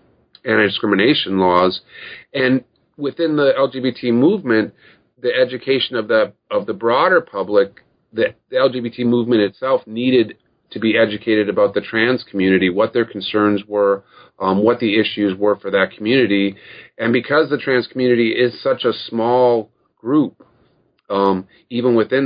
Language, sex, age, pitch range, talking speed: English, male, 40-59, 100-125 Hz, 145 wpm